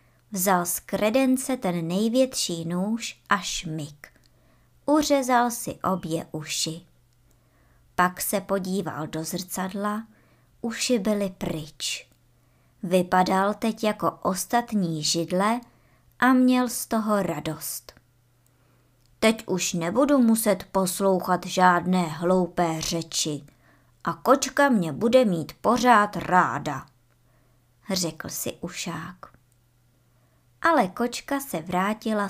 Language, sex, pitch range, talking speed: Czech, male, 155-245 Hz, 95 wpm